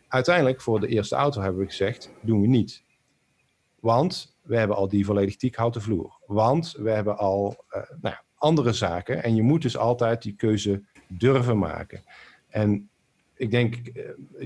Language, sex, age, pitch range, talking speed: Dutch, male, 50-69, 105-130 Hz, 170 wpm